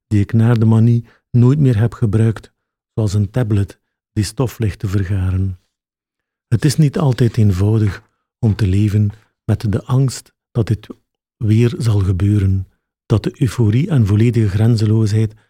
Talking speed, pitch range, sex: 150 wpm, 105-130 Hz, male